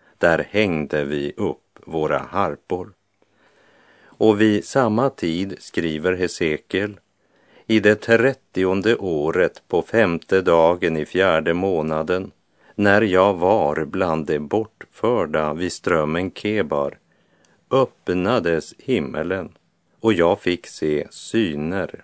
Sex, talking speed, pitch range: male, 105 wpm, 80-110 Hz